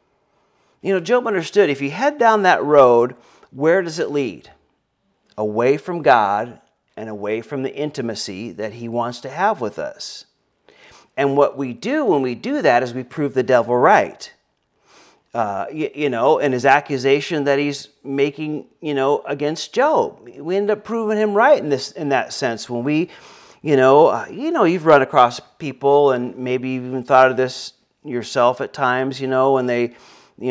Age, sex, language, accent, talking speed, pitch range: 40-59, male, English, American, 185 wpm, 125-160 Hz